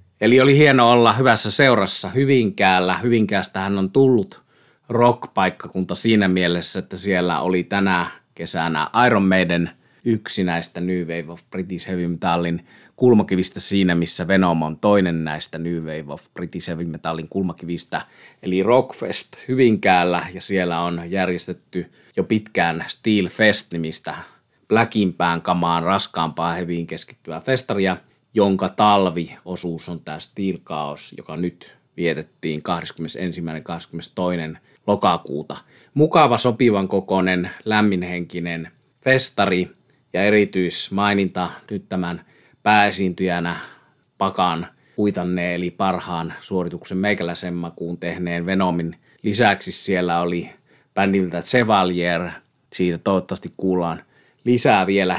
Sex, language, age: male, Finnish, 30-49